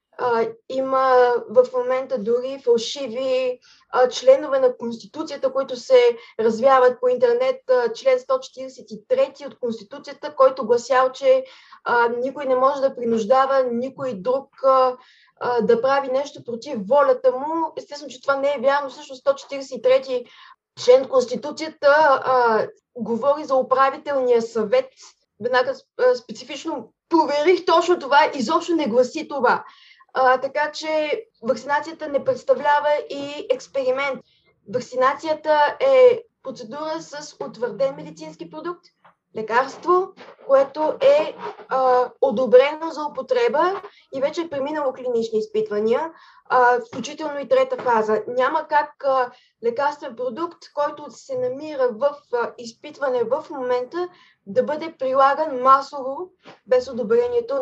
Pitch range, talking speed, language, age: 255-325 Hz, 120 wpm, Bulgarian, 20-39